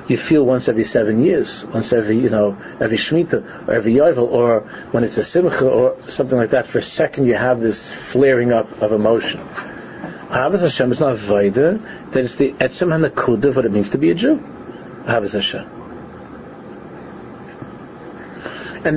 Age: 50-69